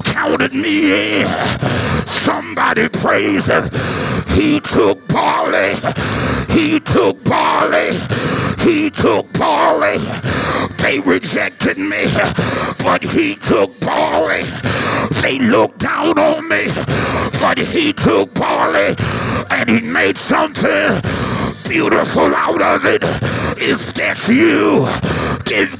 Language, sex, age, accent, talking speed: English, male, 50-69, American, 100 wpm